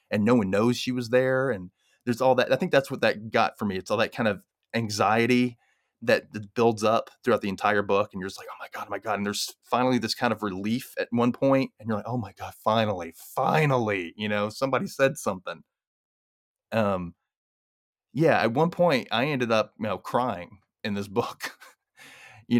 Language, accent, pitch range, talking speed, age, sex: English, American, 100-120 Hz, 210 wpm, 20-39, male